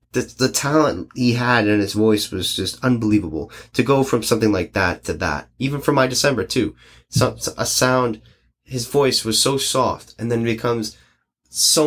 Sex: male